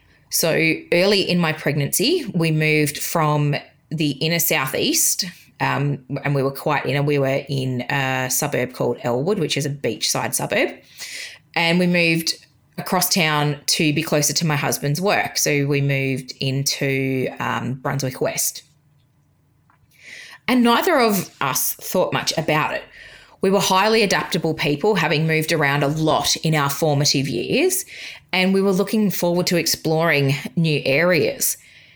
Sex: female